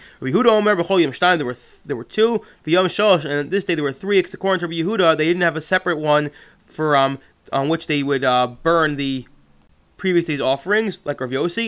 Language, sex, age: English, male, 20-39